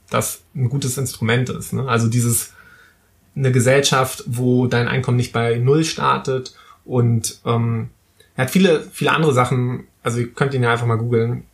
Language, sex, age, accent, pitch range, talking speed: German, male, 20-39, German, 120-140 Hz, 170 wpm